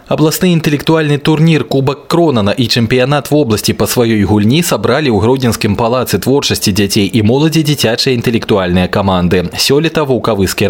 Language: Russian